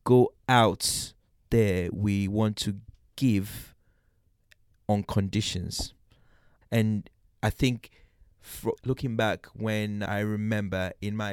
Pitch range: 100-125 Hz